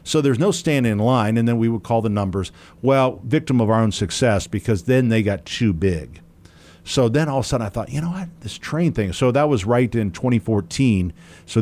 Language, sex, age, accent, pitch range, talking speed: English, male, 50-69, American, 95-125 Hz, 240 wpm